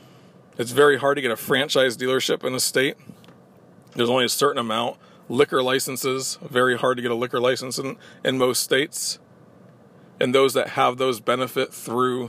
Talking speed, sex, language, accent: 175 wpm, male, English, American